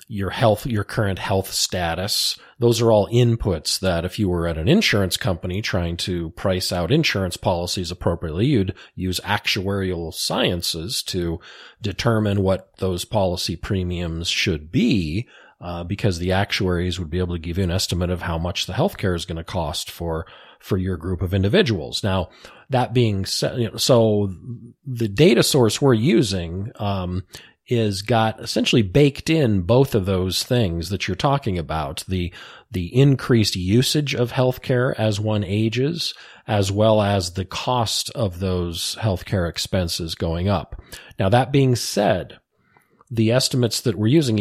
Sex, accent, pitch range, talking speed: male, American, 90-115 Hz, 160 wpm